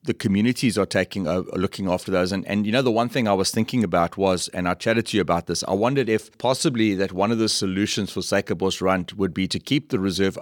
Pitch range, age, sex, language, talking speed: 90-110 Hz, 30-49, male, English, 260 wpm